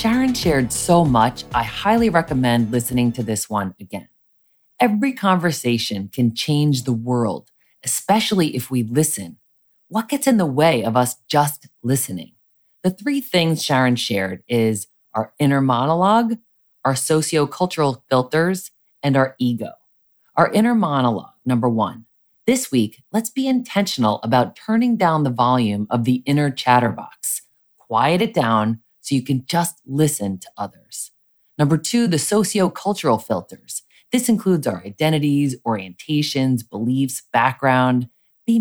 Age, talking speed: 30-49, 135 wpm